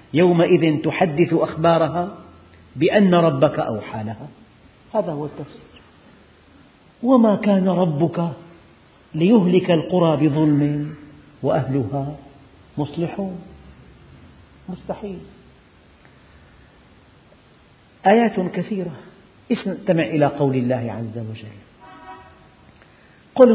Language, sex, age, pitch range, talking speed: Arabic, male, 50-69, 115-180 Hz, 70 wpm